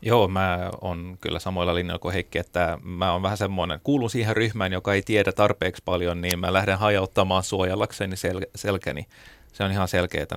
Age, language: 30-49, Finnish